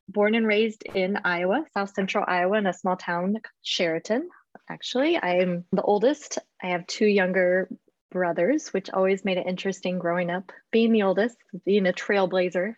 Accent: American